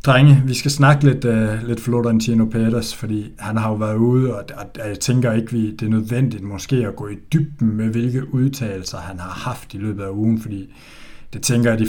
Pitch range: 110-135 Hz